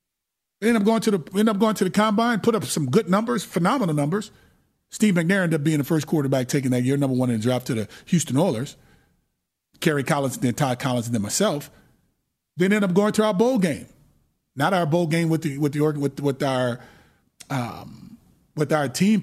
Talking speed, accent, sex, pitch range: 215 wpm, American, male, 125-165 Hz